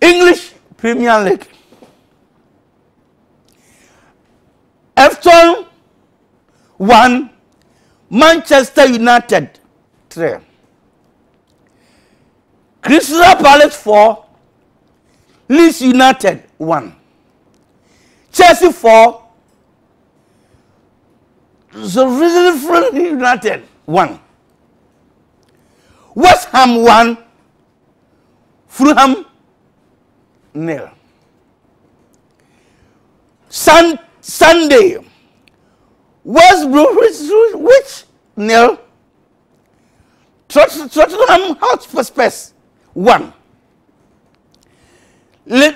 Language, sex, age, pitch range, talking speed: Indonesian, male, 60-79, 240-345 Hz, 45 wpm